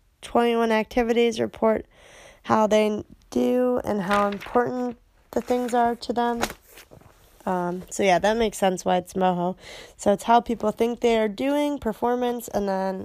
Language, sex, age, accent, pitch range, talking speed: English, female, 20-39, American, 200-235 Hz, 155 wpm